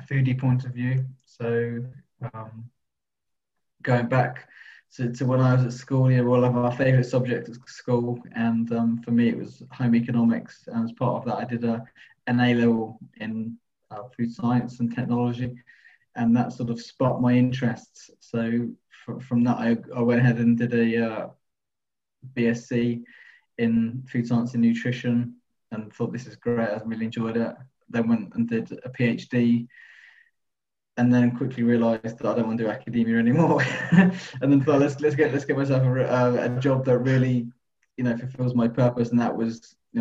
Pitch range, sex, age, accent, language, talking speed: 115-125 Hz, male, 20-39, British, English, 185 wpm